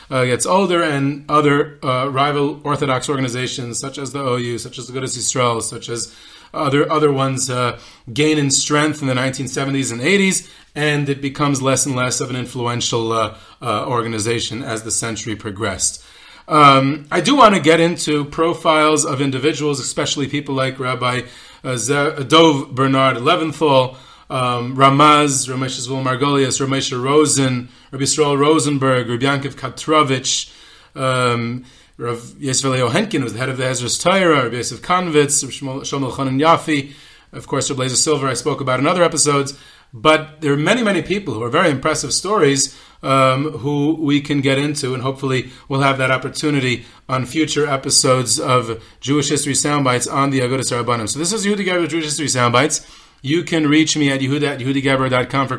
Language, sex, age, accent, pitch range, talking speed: English, male, 30-49, American, 125-150 Hz, 165 wpm